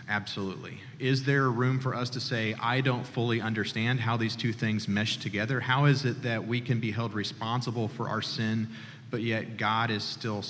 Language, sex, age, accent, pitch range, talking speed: English, male, 40-59, American, 110-140 Hz, 200 wpm